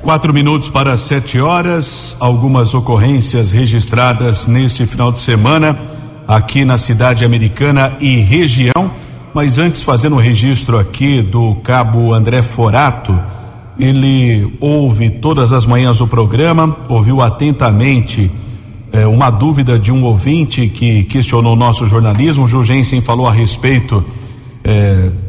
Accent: Brazilian